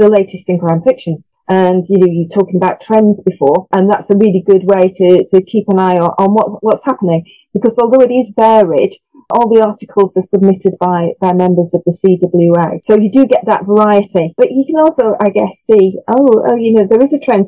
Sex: female